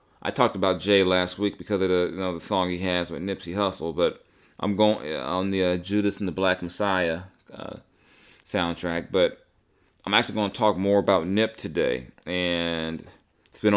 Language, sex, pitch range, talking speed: English, male, 85-105 Hz, 190 wpm